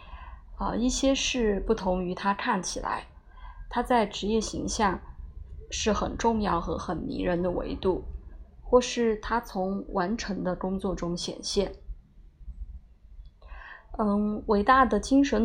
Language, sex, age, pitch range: Chinese, female, 20-39, 175-220 Hz